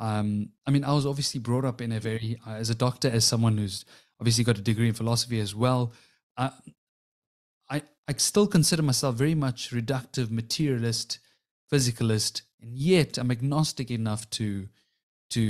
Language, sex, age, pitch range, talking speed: English, male, 30-49, 115-135 Hz, 170 wpm